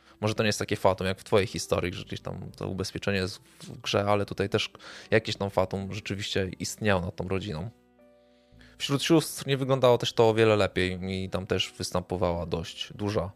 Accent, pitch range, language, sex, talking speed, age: native, 100-120 Hz, Polish, male, 200 wpm, 20-39